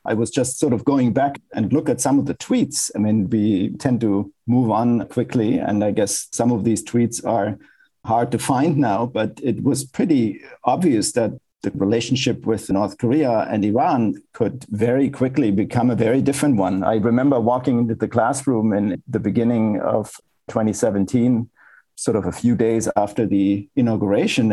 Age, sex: 50-69, male